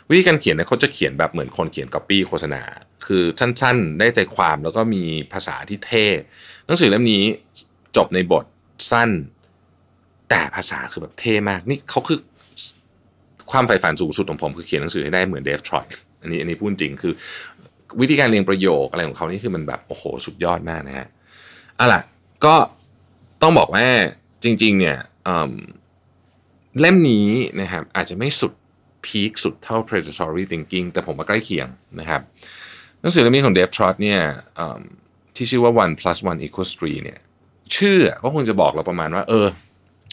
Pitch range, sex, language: 85-110 Hz, male, Thai